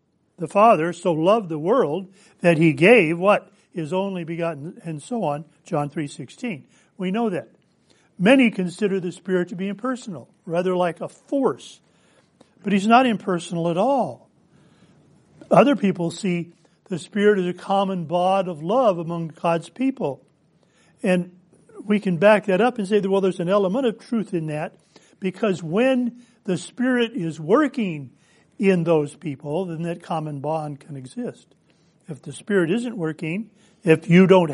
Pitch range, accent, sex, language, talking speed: 170-210 Hz, American, male, English, 160 wpm